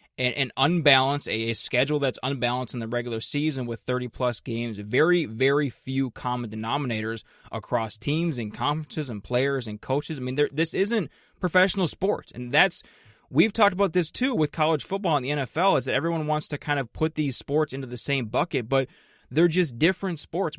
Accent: American